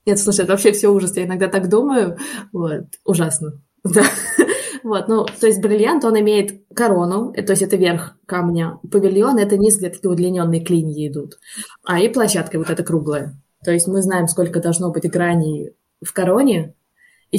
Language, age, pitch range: Russian, 20-39, 165-205 Hz